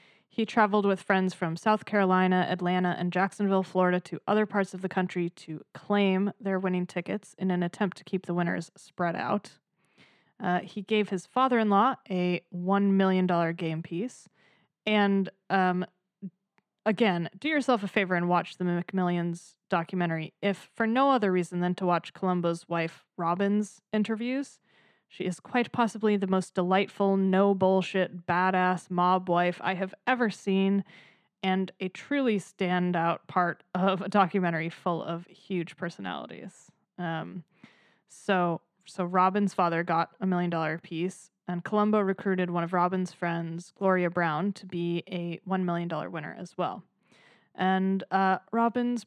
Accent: American